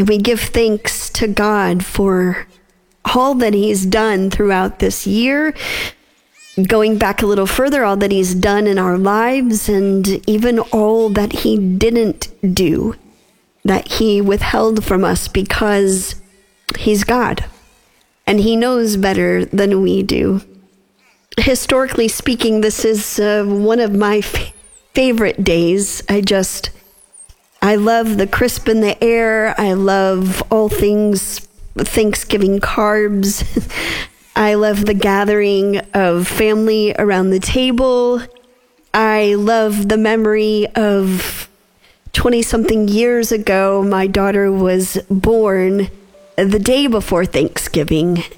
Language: English